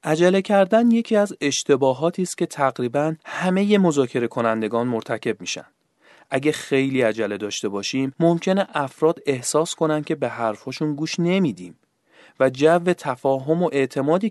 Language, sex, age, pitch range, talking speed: Persian, male, 30-49, 120-165 Hz, 135 wpm